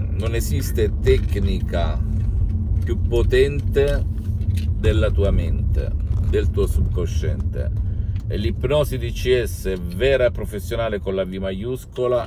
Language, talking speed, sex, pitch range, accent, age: Italian, 105 wpm, male, 85-100 Hz, native, 50-69